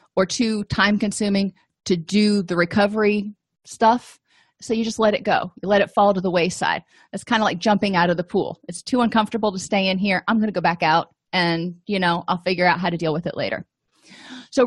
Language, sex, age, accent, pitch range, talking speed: English, female, 30-49, American, 185-235 Hz, 235 wpm